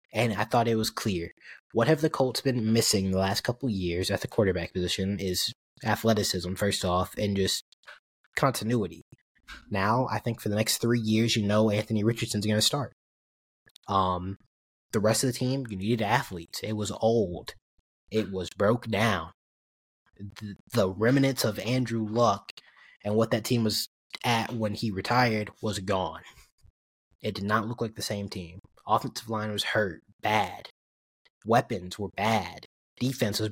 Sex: male